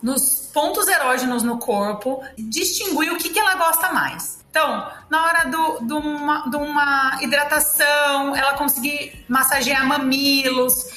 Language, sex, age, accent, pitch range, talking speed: Portuguese, female, 30-49, Brazilian, 250-295 Hz, 140 wpm